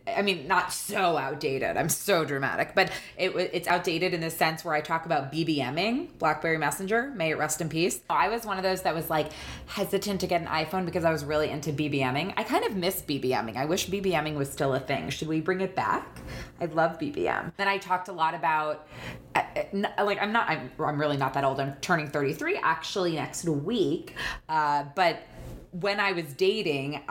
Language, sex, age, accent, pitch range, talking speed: English, female, 20-39, American, 150-185 Hz, 205 wpm